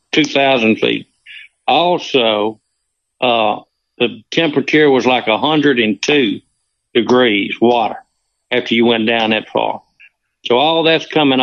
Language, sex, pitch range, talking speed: English, male, 115-145 Hz, 110 wpm